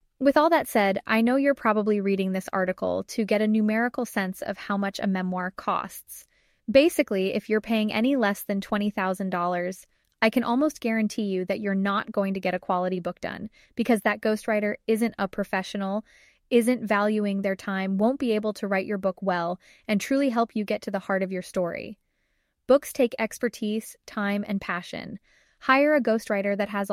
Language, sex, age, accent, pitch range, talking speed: English, female, 20-39, American, 200-240 Hz, 190 wpm